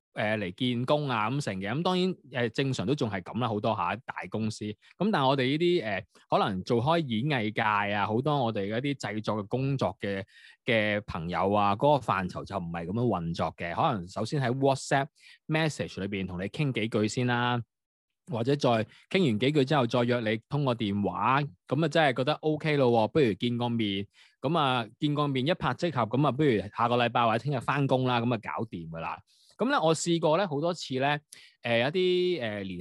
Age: 20-39